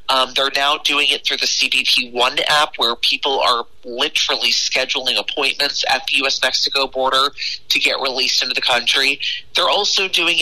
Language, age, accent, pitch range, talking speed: English, 30-49, American, 130-155 Hz, 175 wpm